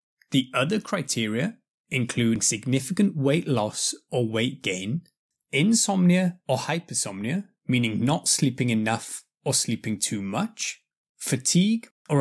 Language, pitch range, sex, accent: English, 125-190 Hz, male, British